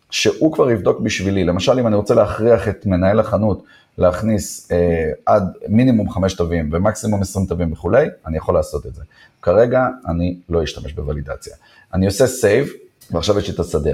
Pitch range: 85-110 Hz